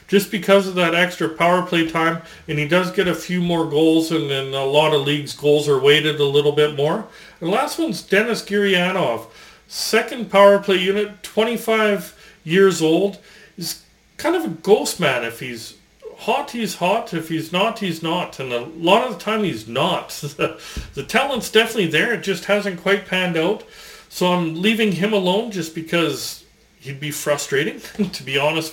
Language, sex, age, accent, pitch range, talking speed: English, male, 40-59, American, 165-210 Hz, 185 wpm